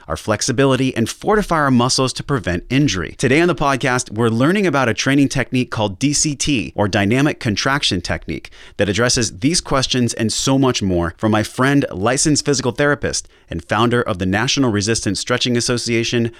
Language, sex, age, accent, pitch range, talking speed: English, male, 30-49, American, 105-135 Hz, 170 wpm